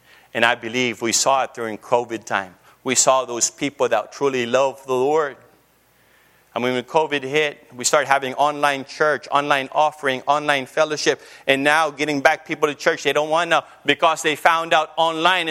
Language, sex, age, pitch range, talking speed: English, male, 30-49, 125-165 Hz, 180 wpm